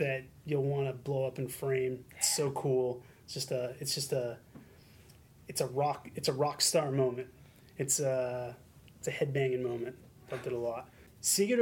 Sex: male